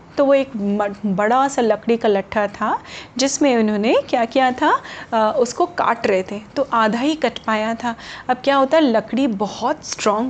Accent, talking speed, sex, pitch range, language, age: native, 180 wpm, female, 215-275 Hz, Hindi, 30-49